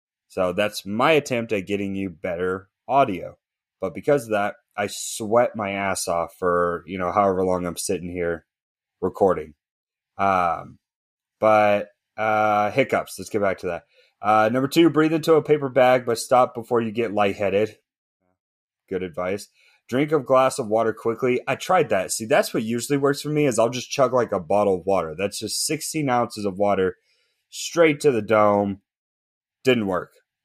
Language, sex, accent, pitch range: English, male, American, 95-130 Hz